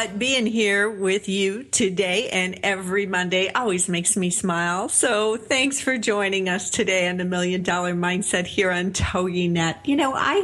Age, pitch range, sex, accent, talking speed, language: 50-69, 180-230 Hz, female, American, 175 wpm, English